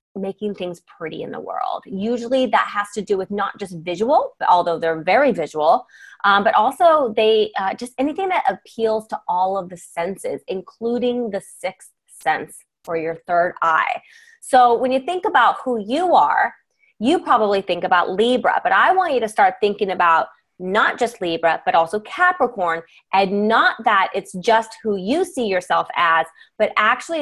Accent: American